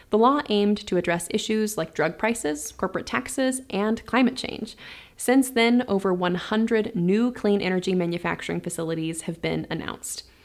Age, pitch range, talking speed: 20-39, 180-230 Hz, 150 wpm